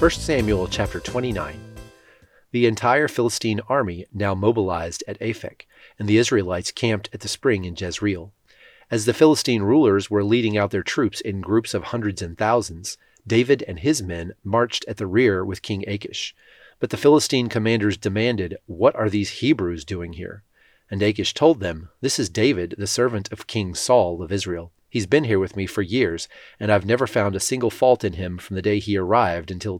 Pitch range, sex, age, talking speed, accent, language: 95-120 Hz, male, 30-49, 190 wpm, American, English